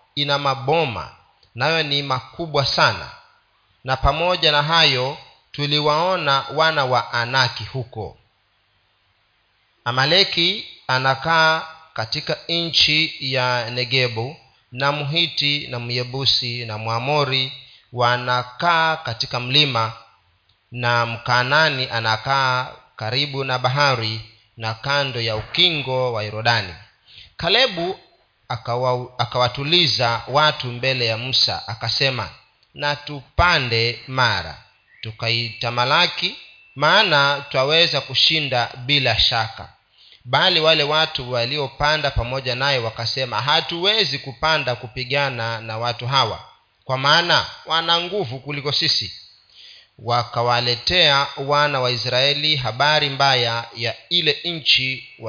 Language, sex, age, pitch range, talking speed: Swahili, male, 40-59, 115-145 Hz, 95 wpm